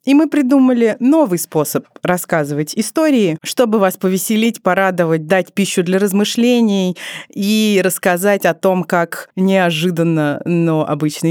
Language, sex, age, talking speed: Russian, female, 20-39, 120 wpm